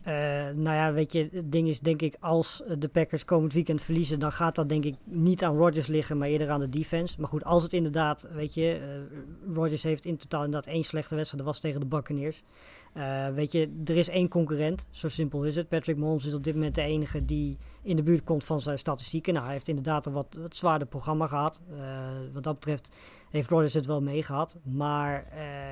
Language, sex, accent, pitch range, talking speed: Dutch, female, Dutch, 145-165 Hz, 235 wpm